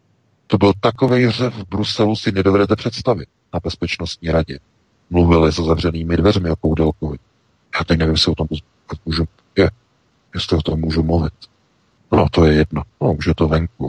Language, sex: Czech, male